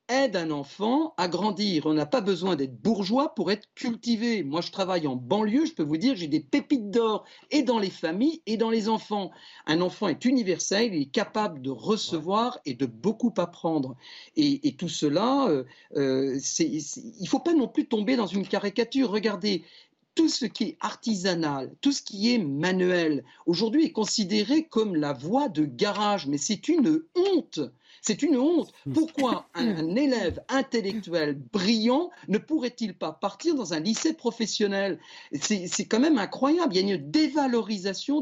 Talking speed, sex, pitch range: 180 wpm, male, 180-265 Hz